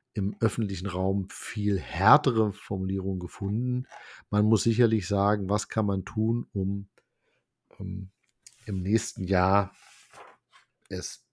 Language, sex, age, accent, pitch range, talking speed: German, male, 50-69, German, 95-115 Hz, 110 wpm